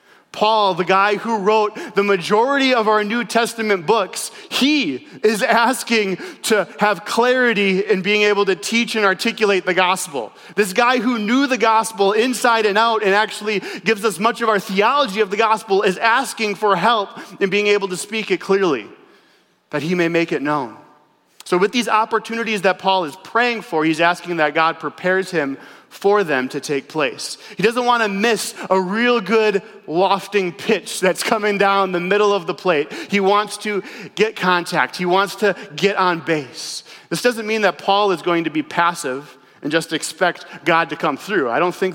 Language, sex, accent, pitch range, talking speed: English, male, American, 180-220 Hz, 190 wpm